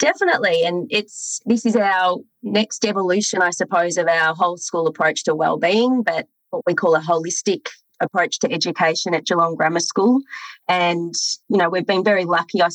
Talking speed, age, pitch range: 180 wpm, 30-49, 165-195 Hz